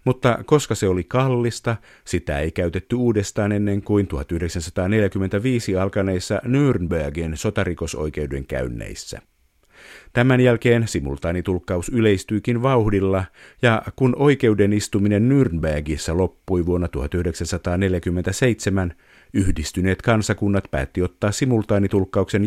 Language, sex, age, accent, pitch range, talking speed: Finnish, male, 50-69, native, 85-115 Hz, 90 wpm